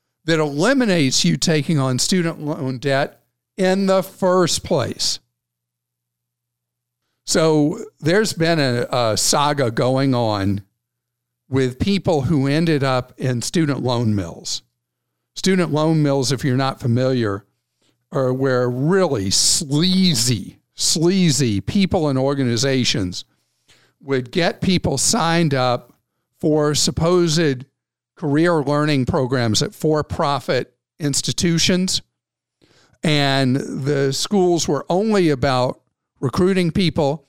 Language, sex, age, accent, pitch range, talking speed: English, male, 50-69, American, 125-165 Hz, 105 wpm